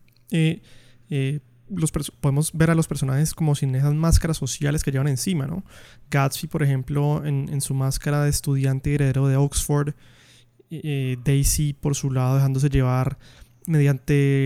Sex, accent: male, Colombian